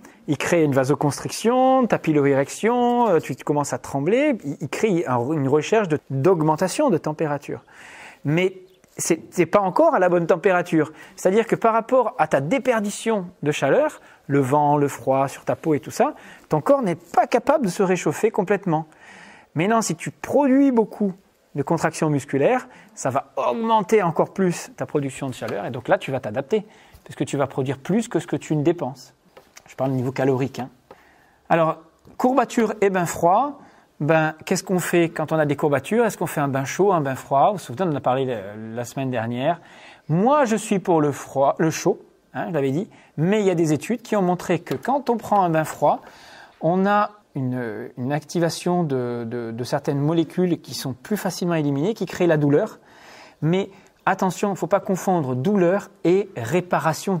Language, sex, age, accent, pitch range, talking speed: English, male, 30-49, French, 145-200 Hz, 195 wpm